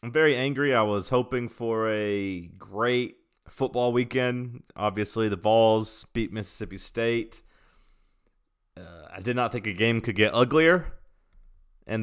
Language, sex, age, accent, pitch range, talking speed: English, male, 30-49, American, 95-120 Hz, 140 wpm